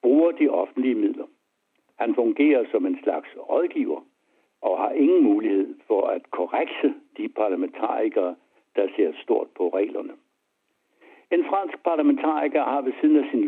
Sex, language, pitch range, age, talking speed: male, Danish, 275-370 Hz, 70-89, 145 wpm